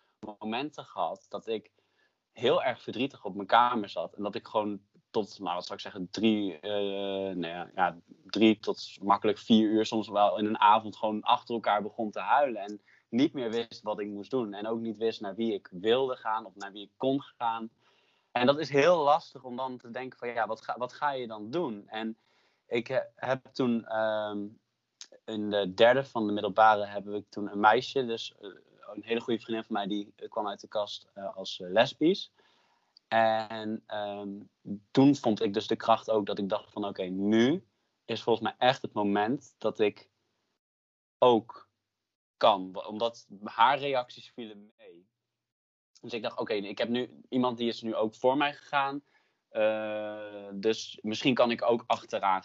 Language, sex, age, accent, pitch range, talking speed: Dutch, male, 20-39, Dutch, 105-120 Hz, 190 wpm